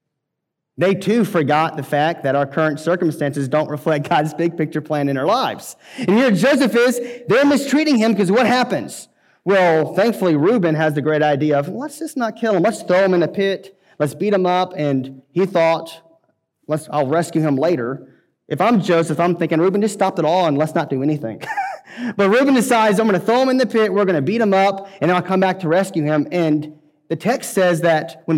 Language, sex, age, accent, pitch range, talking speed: English, male, 30-49, American, 150-195 Hz, 220 wpm